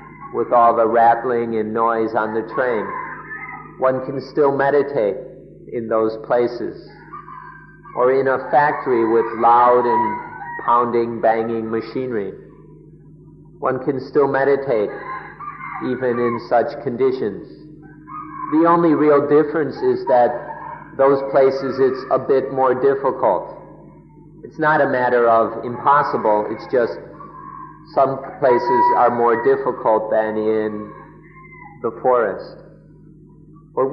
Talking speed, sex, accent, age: 115 wpm, male, American, 50-69